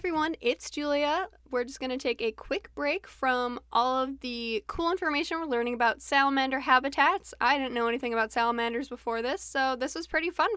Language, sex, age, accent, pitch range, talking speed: English, female, 10-29, American, 235-295 Hz, 205 wpm